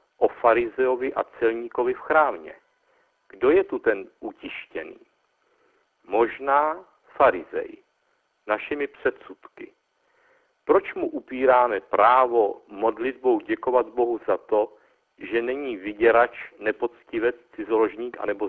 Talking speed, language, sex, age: 95 wpm, Czech, male, 50-69